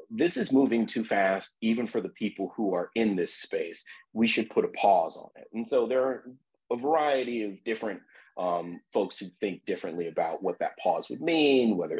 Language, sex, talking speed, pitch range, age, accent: English, male, 205 wpm, 90-130 Hz, 30-49, American